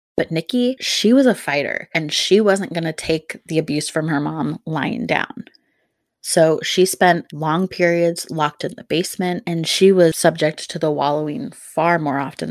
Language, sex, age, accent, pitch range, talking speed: English, female, 20-39, American, 155-185 Hz, 180 wpm